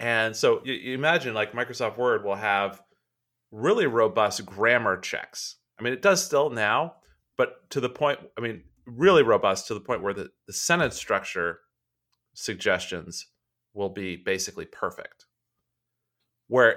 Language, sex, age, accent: English, male, 30-49, American